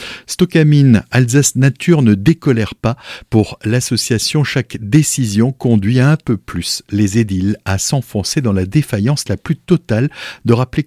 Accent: French